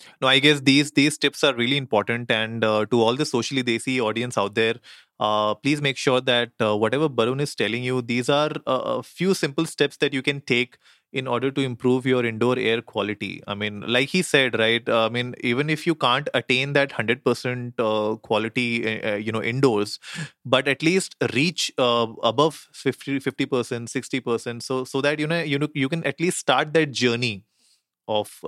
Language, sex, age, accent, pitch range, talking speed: English, male, 30-49, Indian, 110-140 Hz, 195 wpm